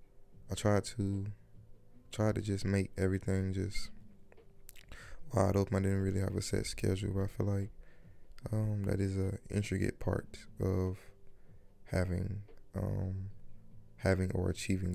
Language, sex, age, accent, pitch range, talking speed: English, male, 20-39, American, 90-105 Hz, 135 wpm